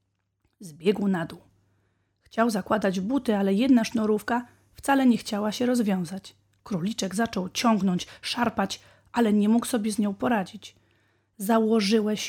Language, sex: Polish, female